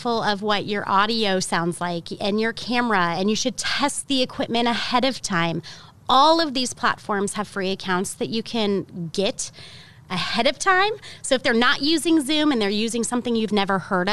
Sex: female